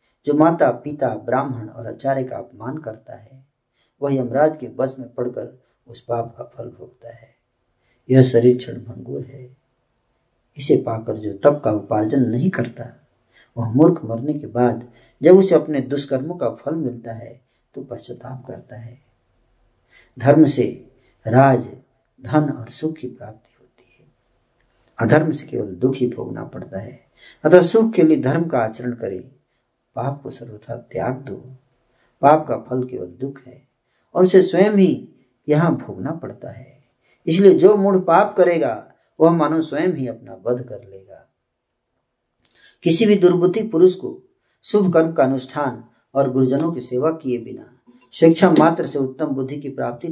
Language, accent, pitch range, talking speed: Hindi, native, 120-155 Hz, 150 wpm